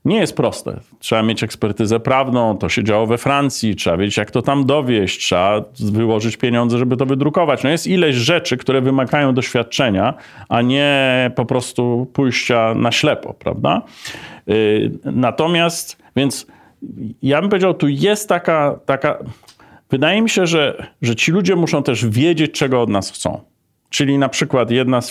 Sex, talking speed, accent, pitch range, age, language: male, 160 wpm, native, 115-145 Hz, 40-59, Polish